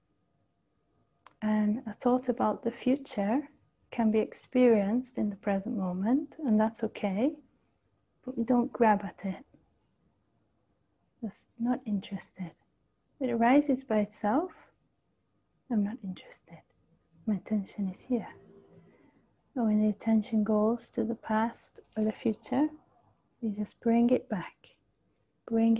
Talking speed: 125 wpm